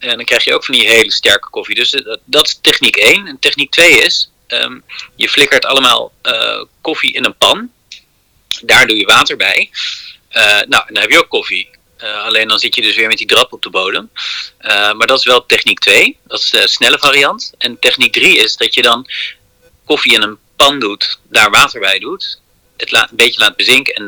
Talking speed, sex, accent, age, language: 215 wpm, male, Dutch, 40-59, Dutch